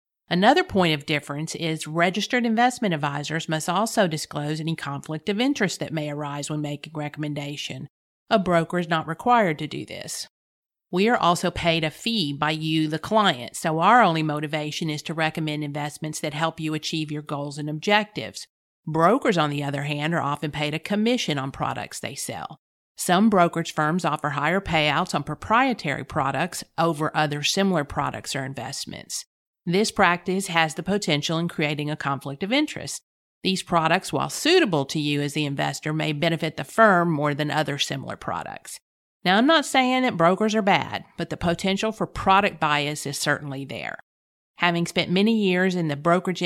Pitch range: 150-185 Hz